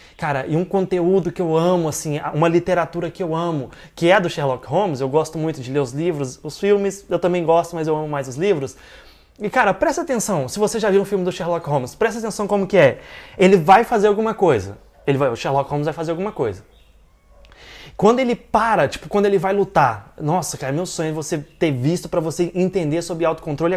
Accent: Brazilian